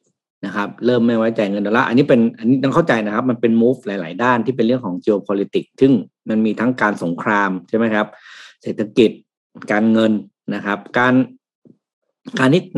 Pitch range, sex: 105-130 Hz, male